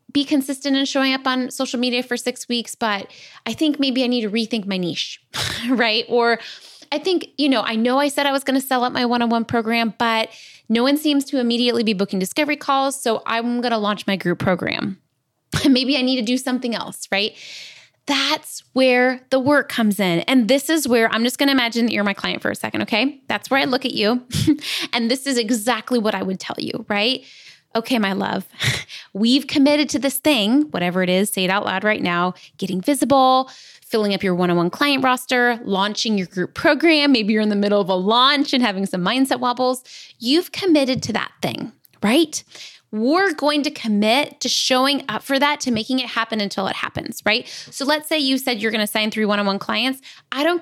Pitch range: 215-275 Hz